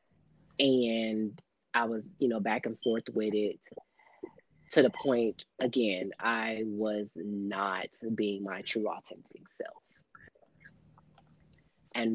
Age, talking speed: 20-39, 115 wpm